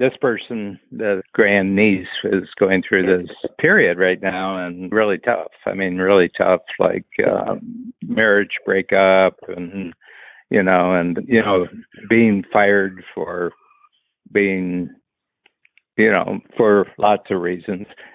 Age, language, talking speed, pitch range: 60-79, English, 130 wpm, 95-110 Hz